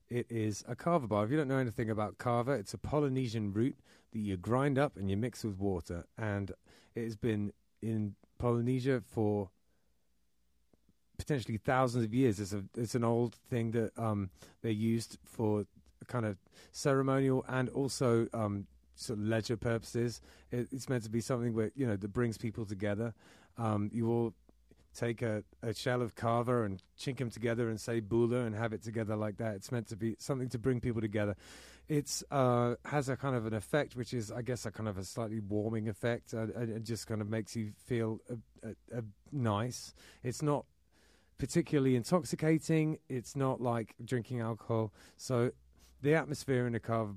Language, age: English, 30-49